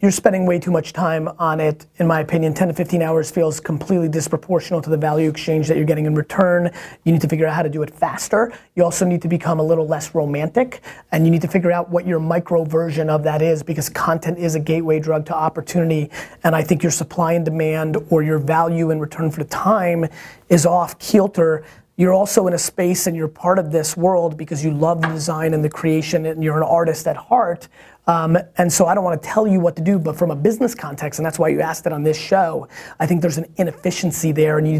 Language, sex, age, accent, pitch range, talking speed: English, male, 30-49, American, 155-175 Hz, 250 wpm